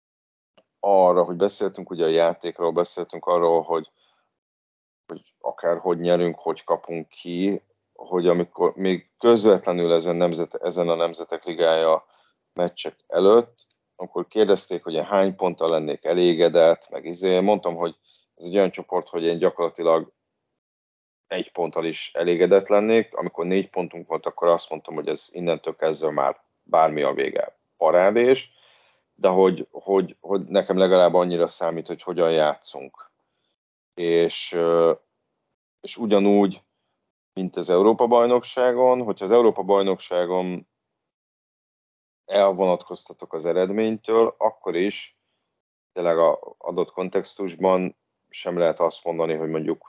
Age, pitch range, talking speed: 30-49, 85-100 Hz, 125 wpm